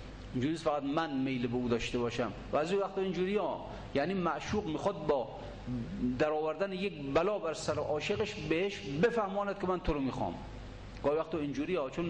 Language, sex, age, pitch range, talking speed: Persian, male, 40-59, 125-195 Hz, 160 wpm